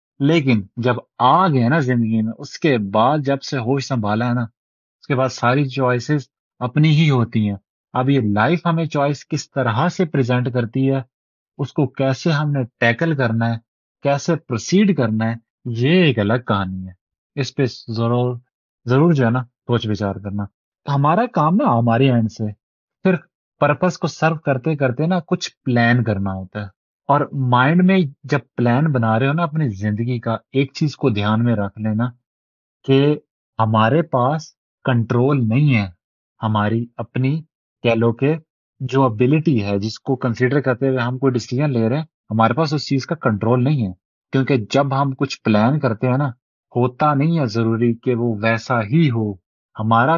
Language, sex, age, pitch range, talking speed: Urdu, male, 30-49, 115-145 Hz, 180 wpm